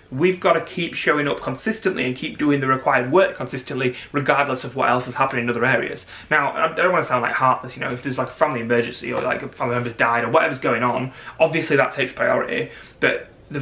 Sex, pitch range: male, 125-160 Hz